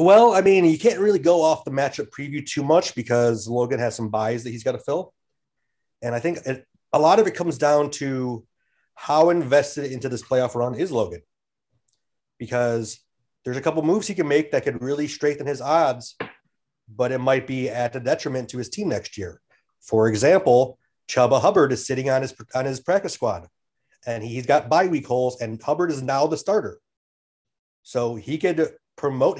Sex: male